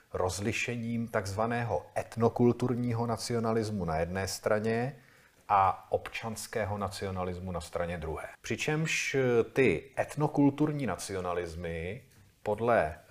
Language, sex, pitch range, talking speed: Czech, male, 100-120 Hz, 80 wpm